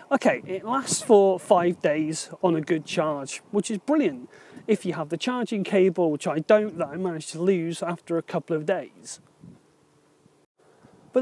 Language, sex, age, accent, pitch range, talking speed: English, male, 30-49, British, 175-225 Hz, 175 wpm